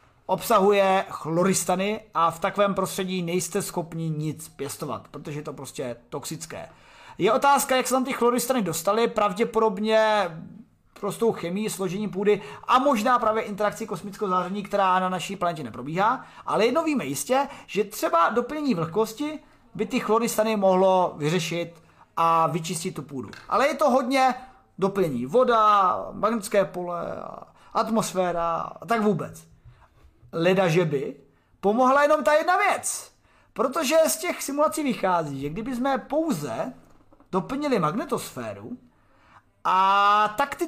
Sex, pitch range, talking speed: male, 185-250 Hz, 130 wpm